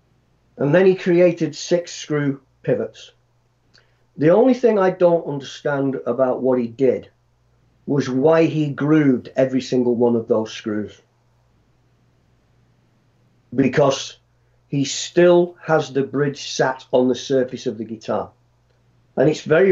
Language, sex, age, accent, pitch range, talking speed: English, male, 50-69, British, 120-145 Hz, 130 wpm